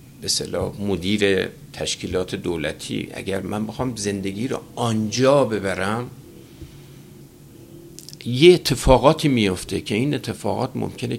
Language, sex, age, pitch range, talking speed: Persian, male, 50-69, 110-145 Hz, 95 wpm